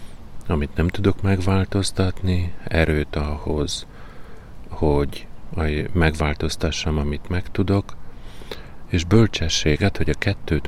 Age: 40-59